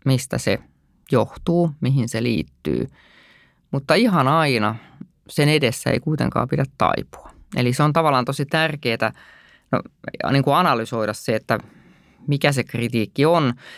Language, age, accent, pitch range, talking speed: Finnish, 20-39, native, 115-140 Hz, 135 wpm